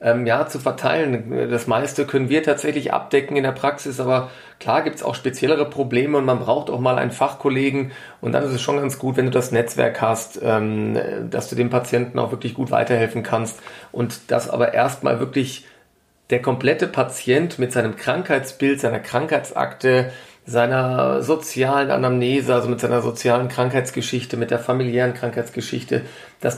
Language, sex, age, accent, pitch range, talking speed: German, male, 40-59, German, 115-130 Hz, 165 wpm